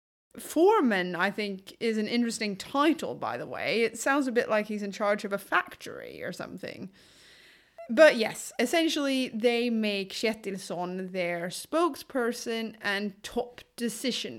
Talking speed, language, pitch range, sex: 140 wpm, English, 200-255 Hz, female